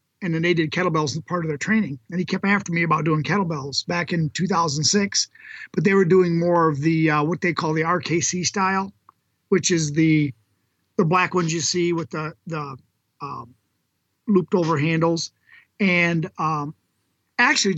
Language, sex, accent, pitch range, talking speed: English, male, American, 160-195 Hz, 180 wpm